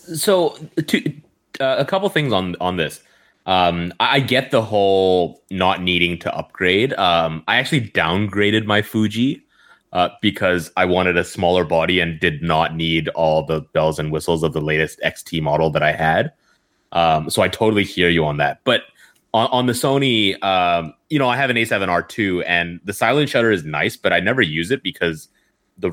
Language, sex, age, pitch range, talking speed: English, male, 20-39, 80-110 Hz, 195 wpm